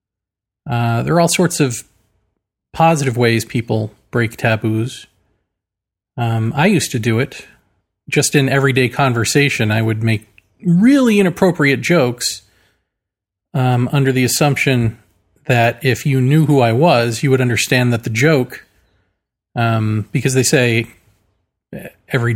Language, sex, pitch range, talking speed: English, male, 110-140 Hz, 130 wpm